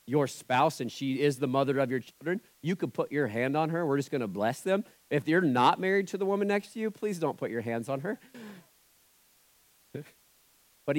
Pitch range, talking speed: 115-145 Hz, 220 wpm